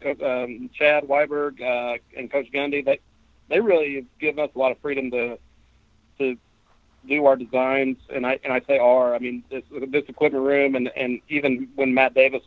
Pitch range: 120-140 Hz